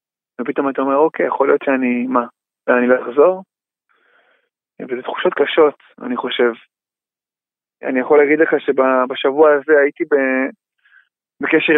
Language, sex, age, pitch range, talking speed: Hebrew, male, 20-39, 130-155 Hz, 120 wpm